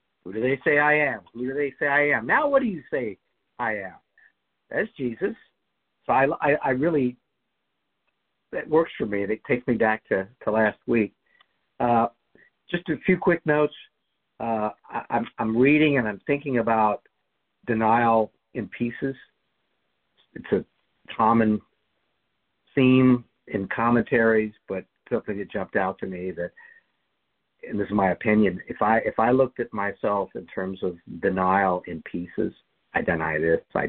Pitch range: 100-135 Hz